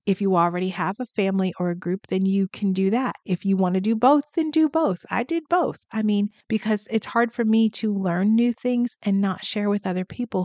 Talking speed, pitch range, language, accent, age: 245 wpm, 180-210 Hz, English, American, 40-59